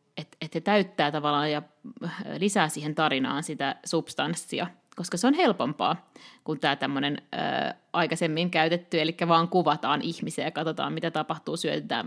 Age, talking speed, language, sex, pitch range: 30-49, 140 wpm, Finnish, female, 155-205 Hz